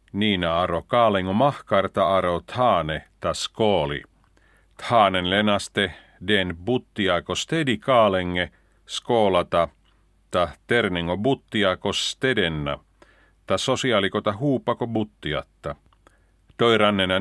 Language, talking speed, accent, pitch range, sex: Finnish, 85 wpm, native, 90-120 Hz, male